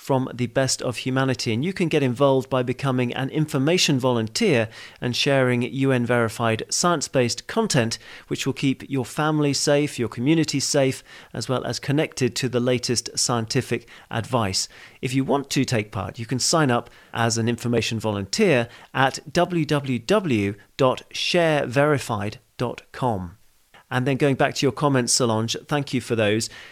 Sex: male